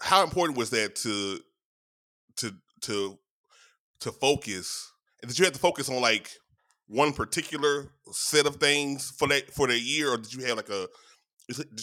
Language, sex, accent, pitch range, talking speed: English, male, American, 110-145 Hz, 170 wpm